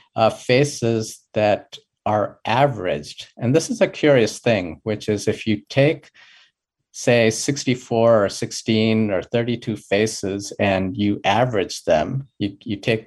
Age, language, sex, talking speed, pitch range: 50-69, English, male, 140 wpm, 100-130 Hz